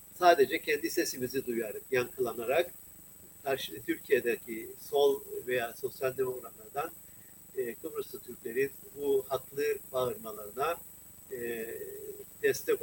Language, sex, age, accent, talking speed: Turkish, male, 50-69, native, 80 wpm